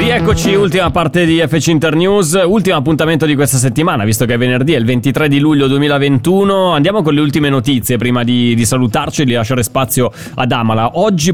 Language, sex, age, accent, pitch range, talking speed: Italian, male, 20-39, native, 125-155 Hz, 200 wpm